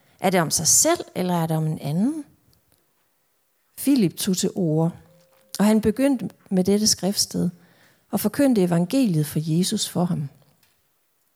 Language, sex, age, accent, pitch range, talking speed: Danish, female, 40-59, native, 160-205 Hz, 150 wpm